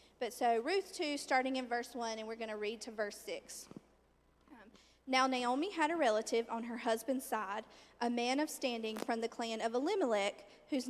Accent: American